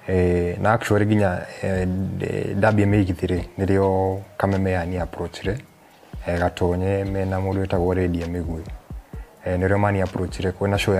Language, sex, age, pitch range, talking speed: Swahili, male, 20-39, 90-100 Hz, 55 wpm